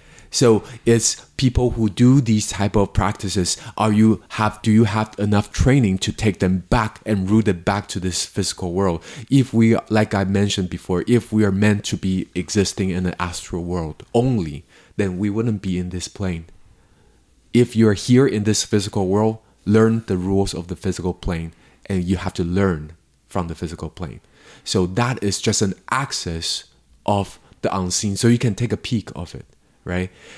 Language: English